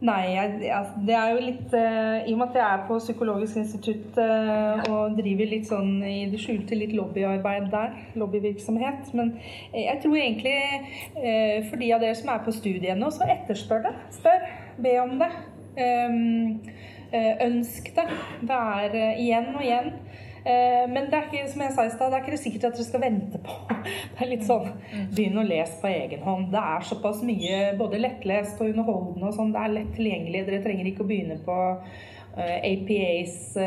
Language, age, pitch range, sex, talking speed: English, 30-49, 200-235 Hz, female, 180 wpm